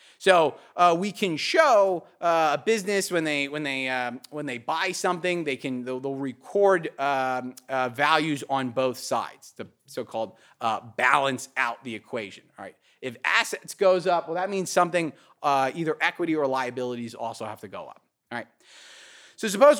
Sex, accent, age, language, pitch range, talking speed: male, American, 30-49, English, 135-180 Hz, 180 wpm